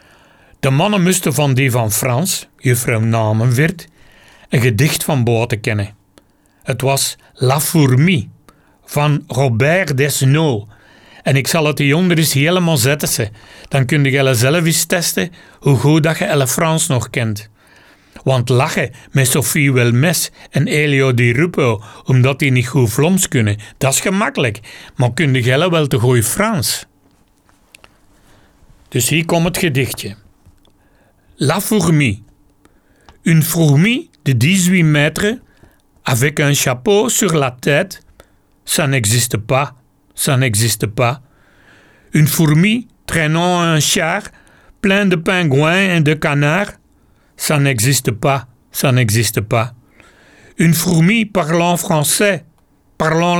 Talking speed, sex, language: 130 wpm, male, Dutch